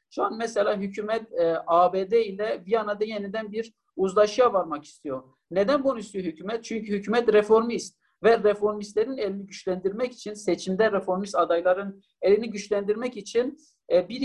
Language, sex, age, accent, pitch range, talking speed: Turkish, male, 50-69, native, 185-225 Hz, 140 wpm